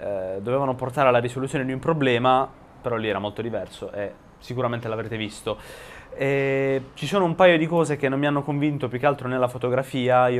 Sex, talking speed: male, 190 wpm